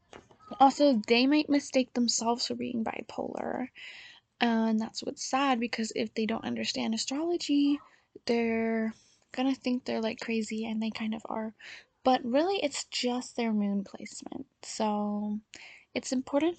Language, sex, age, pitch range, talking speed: English, female, 10-29, 225-275 Hz, 140 wpm